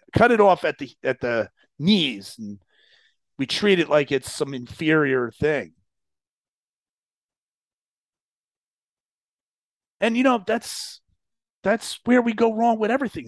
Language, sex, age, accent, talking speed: English, male, 40-59, American, 125 wpm